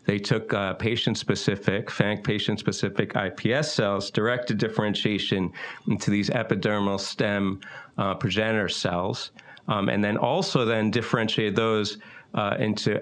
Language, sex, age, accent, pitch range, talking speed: English, male, 40-59, American, 95-115 Hz, 120 wpm